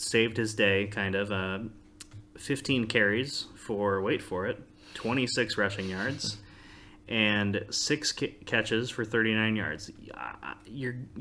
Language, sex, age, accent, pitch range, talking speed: English, male, 20-39, American, 100-120 Hz, 125 wpm